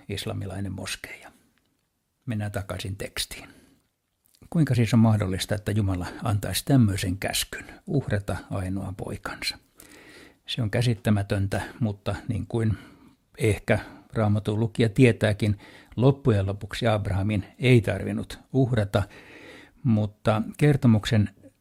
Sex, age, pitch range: male, 60-79, 100-115 Hz